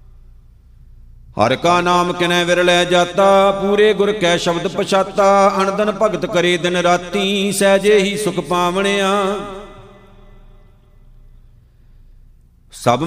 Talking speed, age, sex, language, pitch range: 95 wpm, 50-69, male, Punjabi, 175-195 Hz